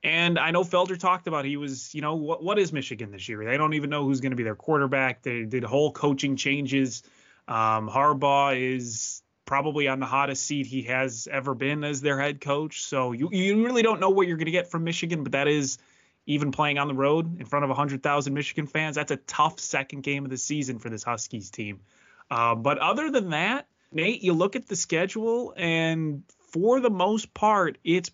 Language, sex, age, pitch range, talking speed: English, male, 20-39, 130-165 Hz, 220 wpm